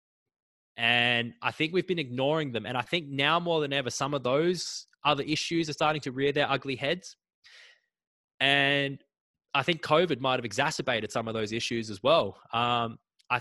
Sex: male